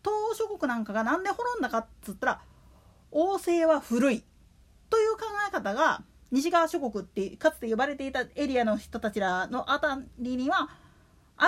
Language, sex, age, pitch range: Japanese, female, 40-59, 250-360 Hz